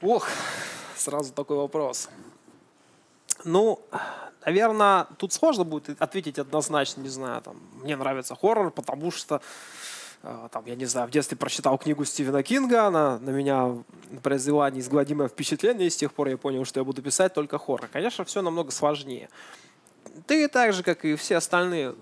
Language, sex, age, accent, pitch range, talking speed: Russian, male, 20-39, native, 135-185 Hz, 155 wpm